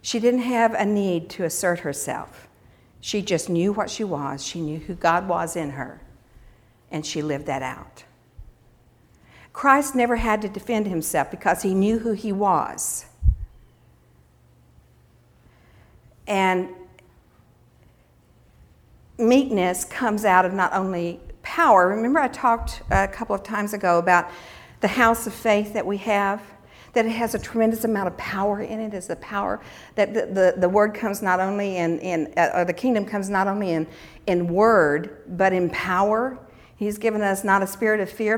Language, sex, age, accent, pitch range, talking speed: English, female, 60-79, American, 175-230 Hz, 165 wpm